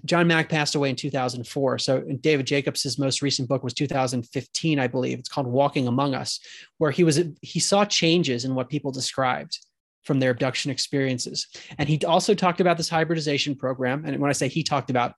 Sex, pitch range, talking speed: male, 135-165 Hz, 200 wpm